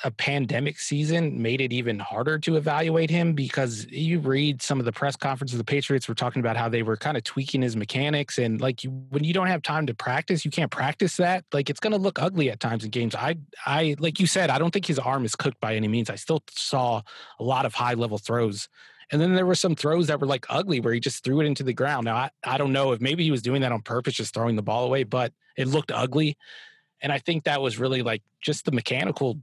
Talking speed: 260 wpm